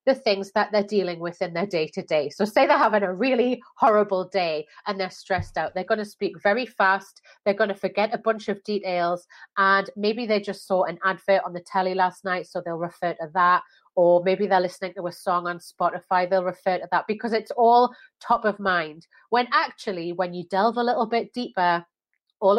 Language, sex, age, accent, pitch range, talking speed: English, female, 30-49, British, 180-225 Hz, 215 wpm